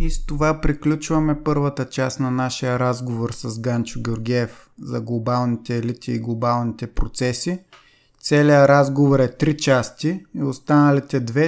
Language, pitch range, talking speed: Bulgarian, 125-145 Hz, 135 wpm